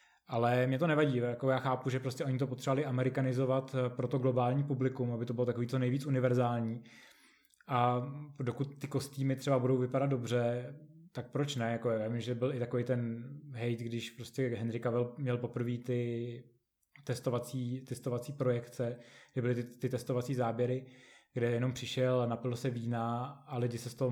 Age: 20-39